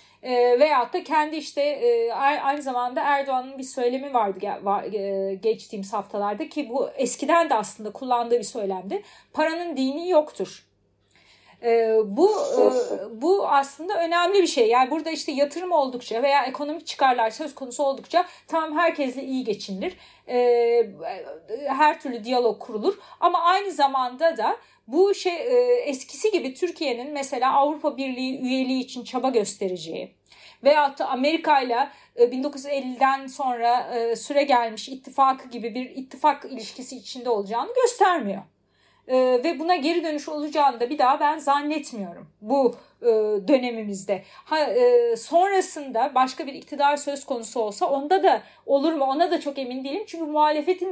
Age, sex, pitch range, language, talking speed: 40-59, female, 240-320 Hz, Turkish, 135 wpm